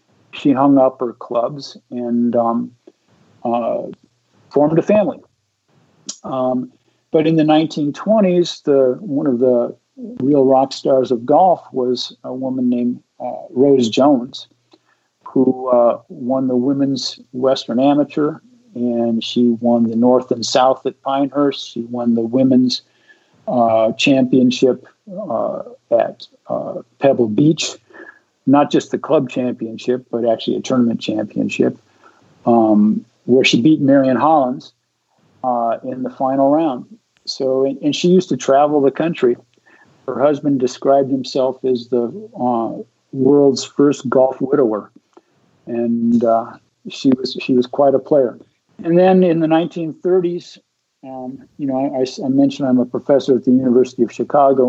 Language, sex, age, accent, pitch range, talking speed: English, male, 50-69, American, 125-145 Hz, 140 wpm